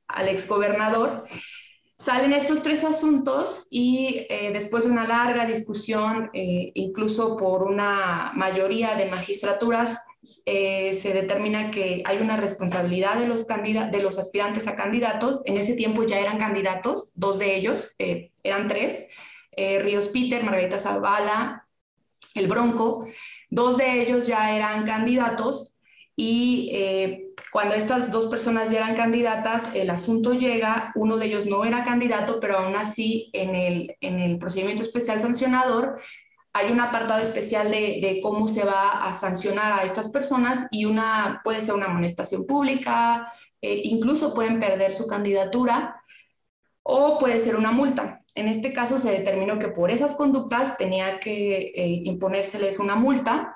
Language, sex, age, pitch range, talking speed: Spanish, female, 20-39, 200-240 Hz, 150 wpm